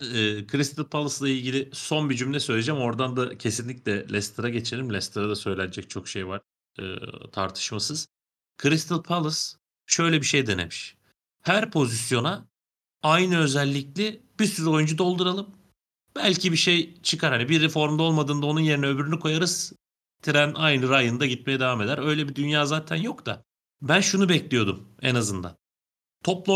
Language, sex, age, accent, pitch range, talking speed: Turkish, male, 40-59, native, 105-155 Hz, 140 wpm